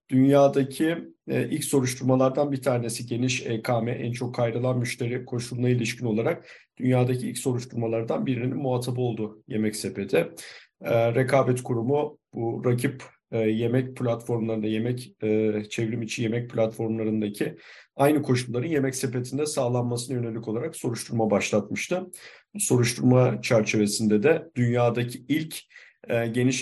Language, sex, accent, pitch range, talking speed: Turkish, male, native, 110-130 Hz, 105 wpm